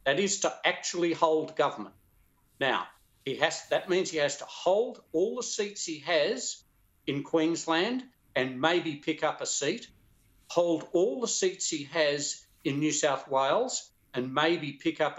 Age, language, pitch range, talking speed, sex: 50-69, English, 135-170 Hz, 165 wpm, male